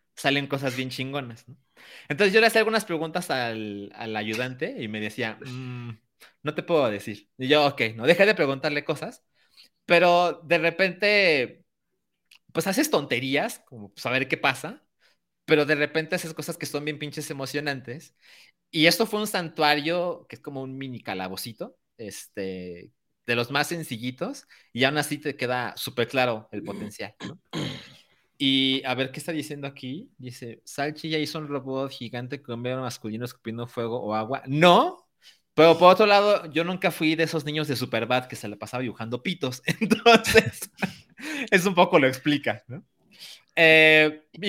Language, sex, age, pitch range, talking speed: Spanish, male, 30-49, 125-170 Hz, 170 wpm